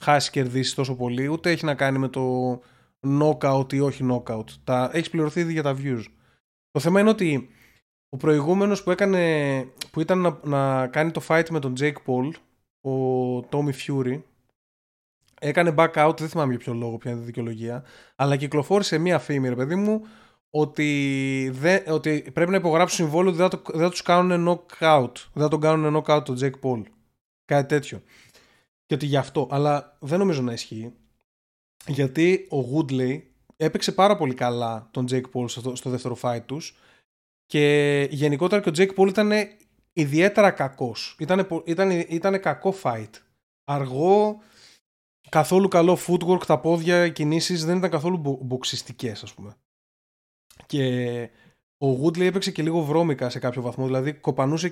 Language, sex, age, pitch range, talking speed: Greek, male, 20-39, 130-170 Hz, 160 wpm